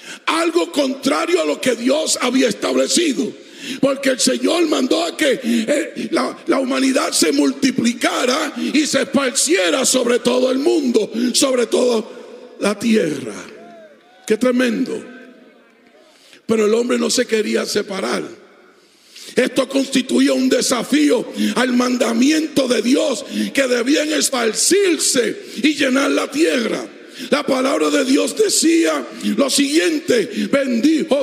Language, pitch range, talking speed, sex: Spanish, 250-300 Hz, 120 wpm, male